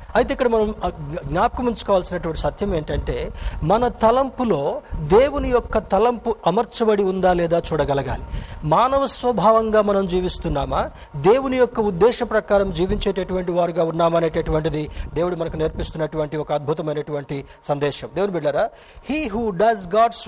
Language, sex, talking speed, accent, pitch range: Telugu, male, 115 wpm, native, 165-215 Hz